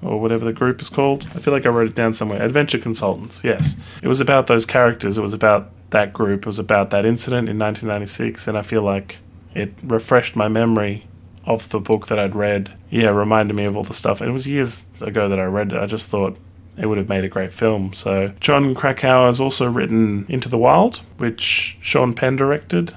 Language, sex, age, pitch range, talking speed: English, male, 20-39, 100-115 Hz, 230 wpm